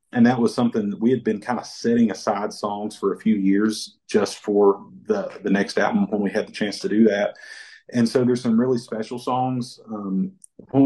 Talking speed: 220 wpm